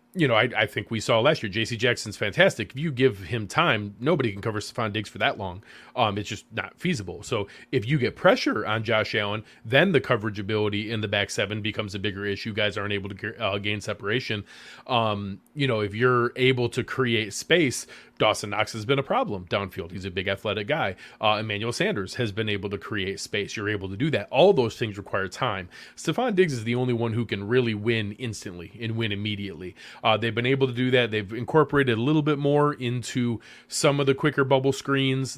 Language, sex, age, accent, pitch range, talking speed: English, male, 30-49, American, 105-130 Hz, 220 wpm